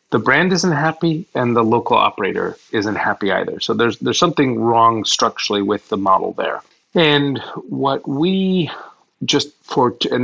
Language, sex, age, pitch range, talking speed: English, male, 30-49, 110-130 Hz, 160 wpm